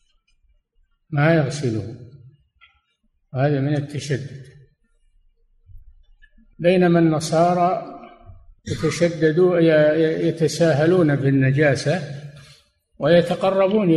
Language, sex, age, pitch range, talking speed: Arabic, male, 60-79, 115-155 Hz, 50 wpm